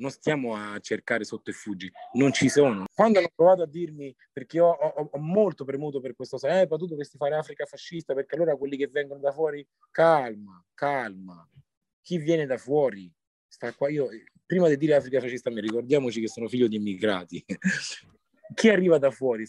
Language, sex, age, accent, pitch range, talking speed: Italian, male, 30-49, native, 120-185 Hz, 195 wpm